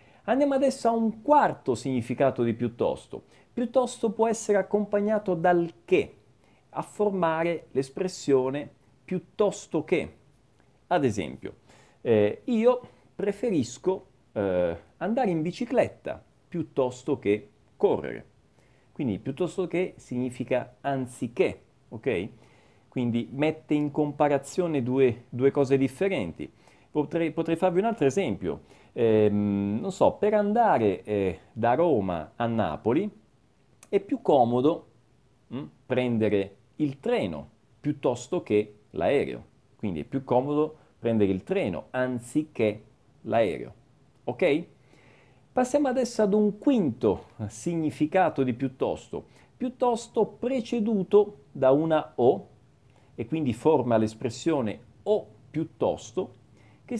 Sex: male